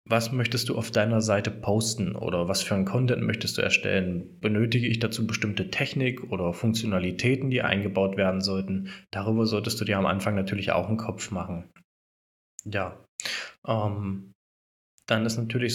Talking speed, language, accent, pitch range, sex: 160 wpm, German, German, 100-120 Hz, male